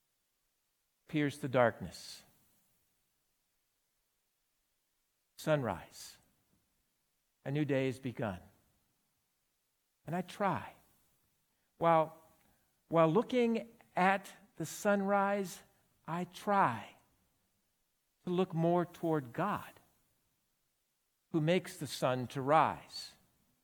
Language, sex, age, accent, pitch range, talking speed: English, male, 50-69, American, 135-195 Hz, 80 wpm